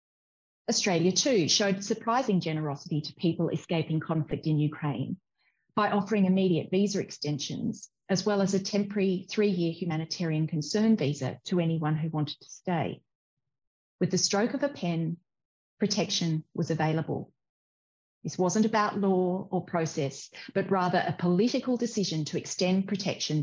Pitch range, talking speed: 155-195 Hz, 140 wpm